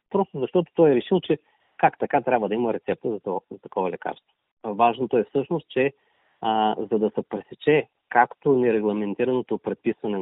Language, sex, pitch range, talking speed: Bulgarian, male, 105-135 Hz, 170 wpm